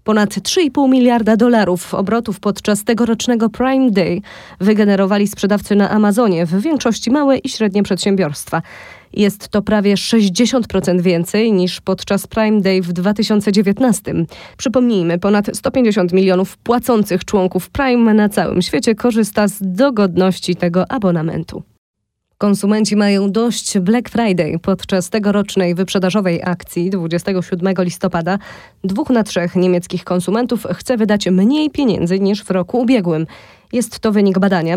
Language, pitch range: Polish, 185-220 Hz